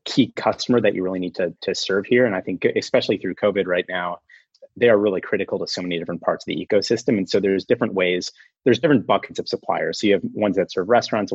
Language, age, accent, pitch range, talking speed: English, 30-49, American, 90-105 Hz, 250 wpm